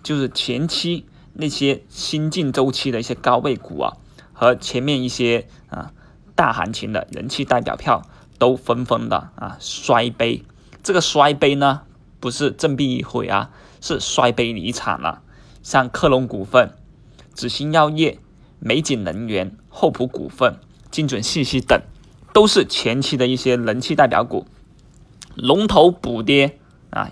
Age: 20-39